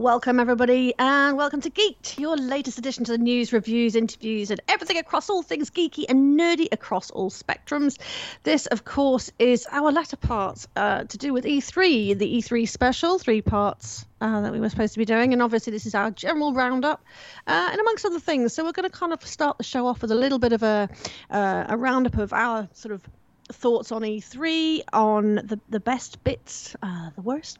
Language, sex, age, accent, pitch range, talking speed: English, female, 40-59, British, 215-290 Hz, 210 wpm